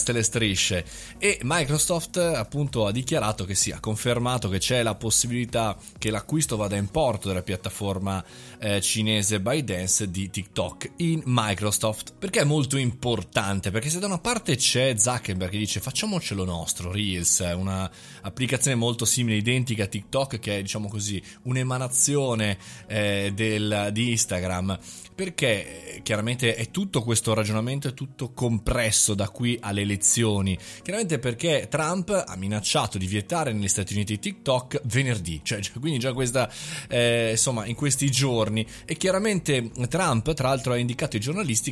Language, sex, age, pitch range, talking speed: Italian, male, 20-39, 105-135 Hz, 155 wpm